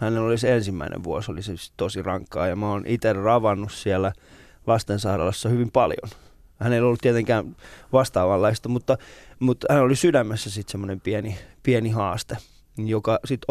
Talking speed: 155 wpm